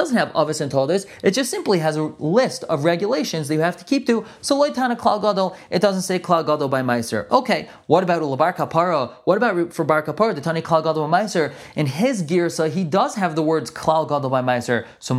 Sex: male